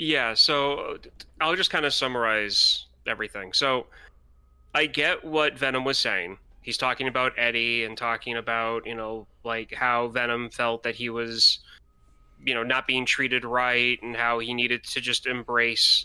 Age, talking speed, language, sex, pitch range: 20-39, 165 wpm, English, male, 115-140 Hz